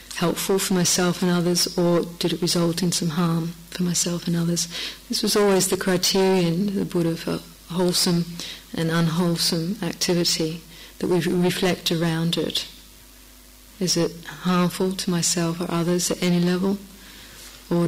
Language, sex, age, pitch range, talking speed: English, female, 40-59, 170-185 Hz, 155 wpm